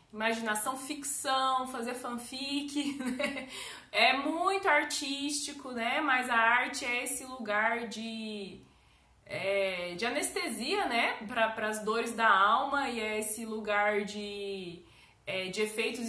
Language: Portuguese